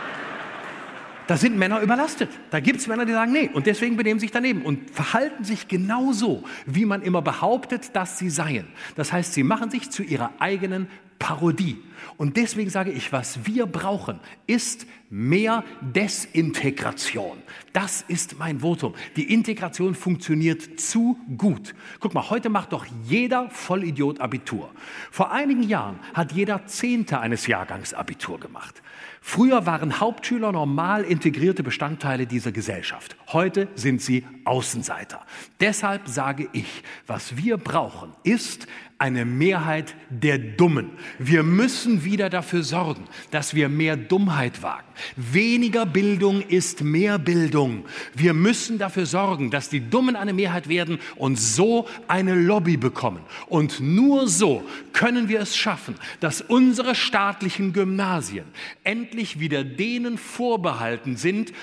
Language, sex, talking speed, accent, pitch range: German, male, 140 wpm, German, 150-215 Hz